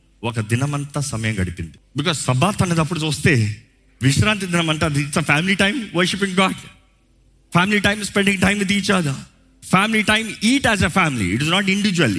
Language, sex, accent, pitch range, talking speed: Telugu, male, native, 130-190 Hz, 80 wpm